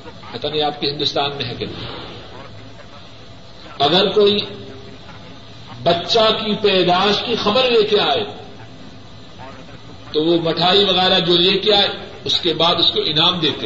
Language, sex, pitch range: Urdu, male, 115-190 Hz